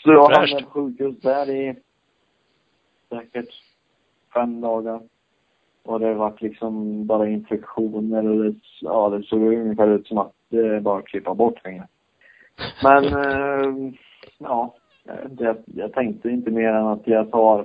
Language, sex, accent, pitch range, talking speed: Swedish, male, Norwegian, 105-120 Hz, 155 wpm